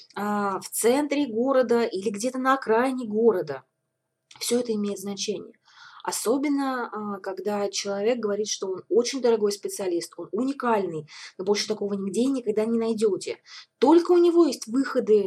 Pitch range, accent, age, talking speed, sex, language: 205-265 Hz, native, 20-39, 140 wpm, female, Russian